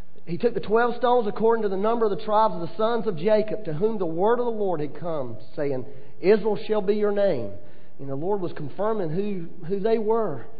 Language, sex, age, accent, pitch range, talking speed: English, male, 40-59, American, 165-235 Hz, 230 wpm